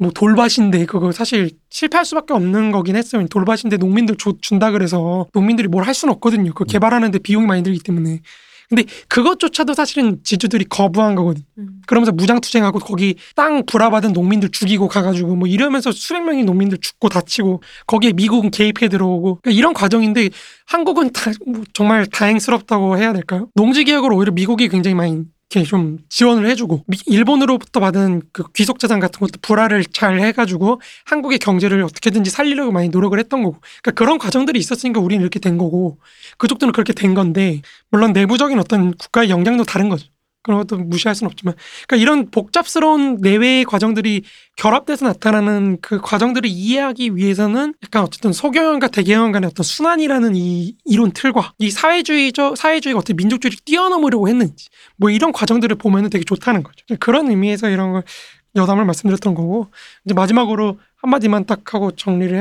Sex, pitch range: male, 190-240 Hz